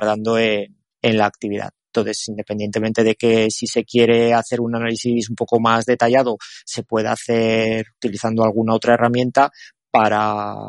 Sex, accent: male, Spanish